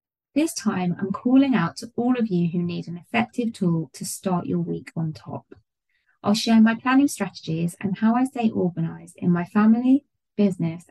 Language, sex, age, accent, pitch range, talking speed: English, female, 20-39, British, 175-235 Hz, 185 wpm